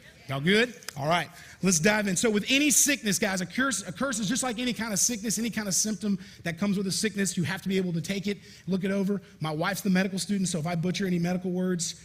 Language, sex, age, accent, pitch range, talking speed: English, male, 30-49, American, 155-200 Hz, 275 wpm